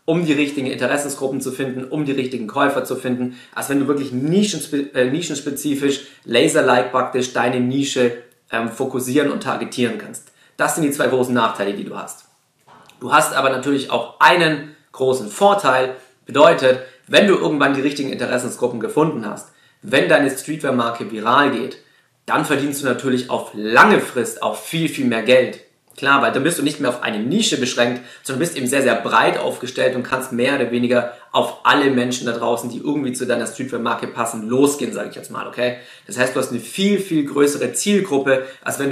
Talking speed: 185 wpm